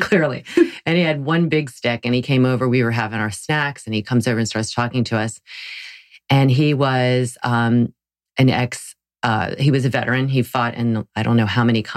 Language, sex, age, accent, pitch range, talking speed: English, female, 30-49, American, 120-145 Hz, 220 wpm